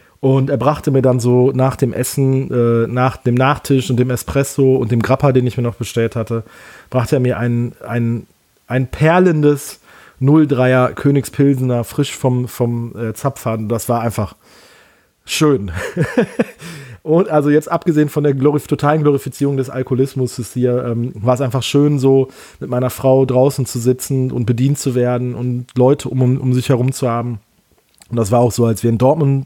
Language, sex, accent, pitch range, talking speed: German, male, German, 120-135 Hz, 180 wpm